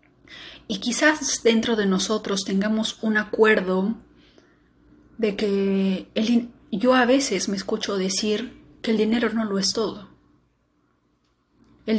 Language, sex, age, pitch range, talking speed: Spanish, female, 30-49, 195-240 Hz, 125 wpm